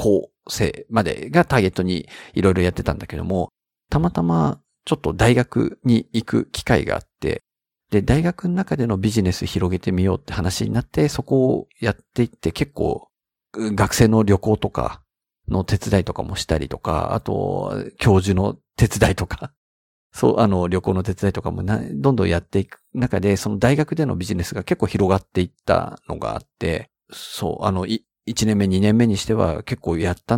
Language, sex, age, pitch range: Japanese, male, 50-69, 90-120 Hz